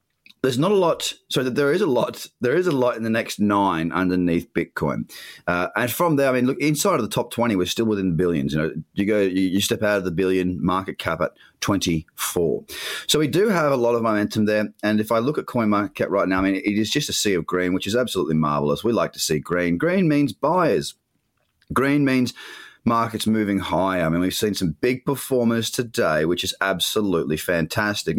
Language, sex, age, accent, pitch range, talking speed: English, male, 30-49, Australian, 95-125 Hz, 225 wpm